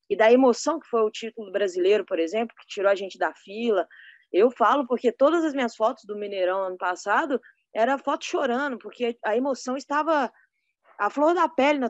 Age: 20-39